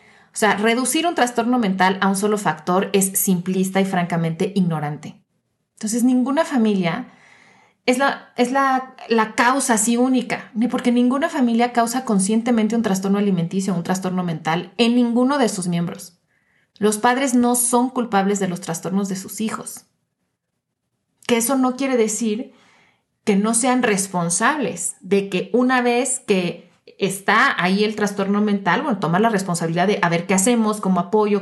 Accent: Mexican